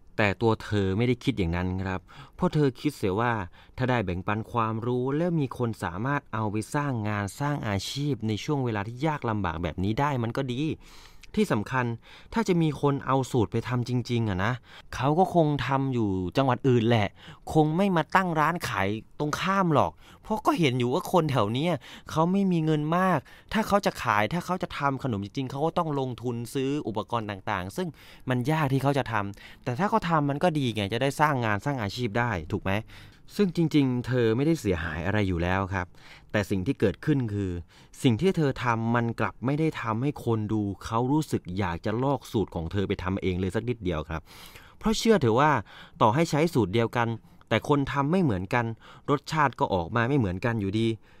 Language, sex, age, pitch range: English, male, 20-39, 105-145 Hz